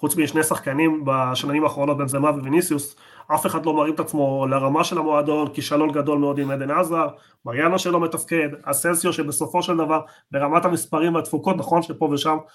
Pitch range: 150-185 Hz